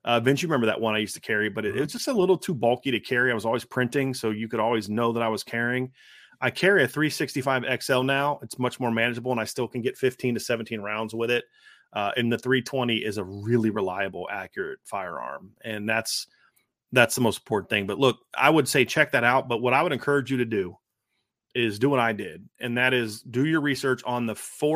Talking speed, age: 245 wpm, 30-49